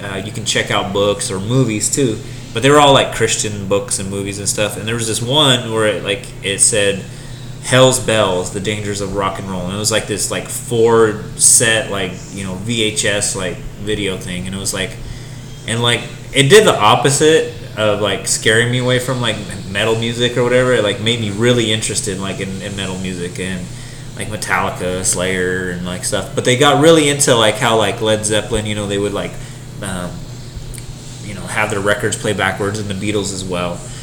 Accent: American